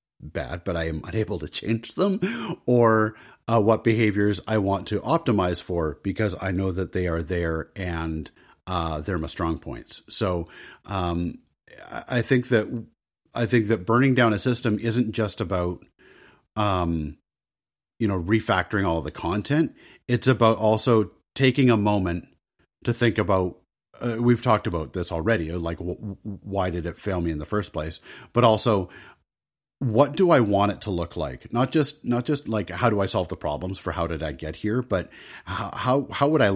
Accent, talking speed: American, 180 wpm